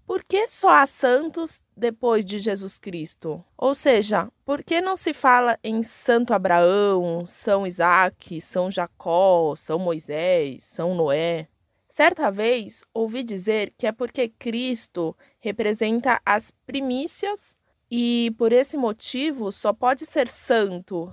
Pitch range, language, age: 195-265 Hz, Portuguese, 20-39